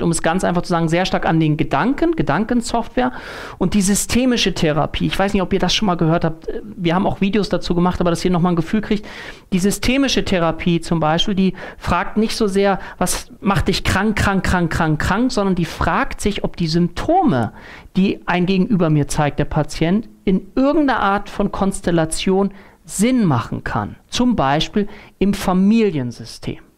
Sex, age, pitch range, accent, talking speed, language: male, 40-59, 170-220 Hz, German, 185 wpm, German